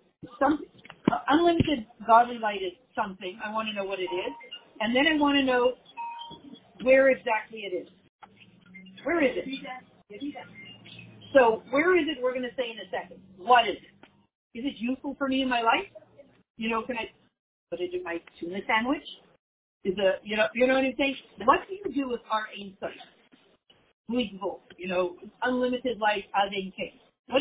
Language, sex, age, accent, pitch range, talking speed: English, female, 50-69, American, 200-275 Hz, 175 wpm